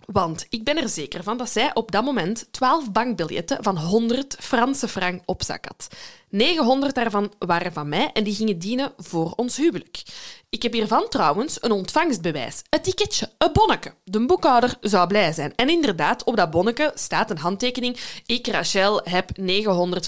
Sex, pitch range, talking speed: female, 180-245 Hz, 175 wpm